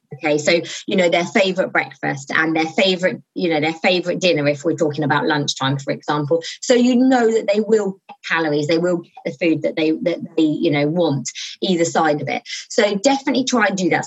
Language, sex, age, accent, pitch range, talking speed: English, female, 20-39, British, 165-230 Hz, 220 wpm